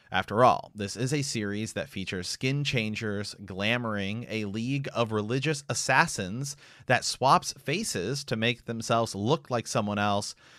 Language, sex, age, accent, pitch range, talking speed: English, male, 30-49, American, 100-130 Hz, 145 wpm